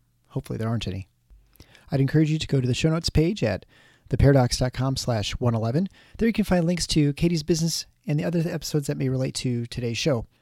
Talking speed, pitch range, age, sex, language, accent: 205 wpm, 125-175 Hz, 40-59, male, English, American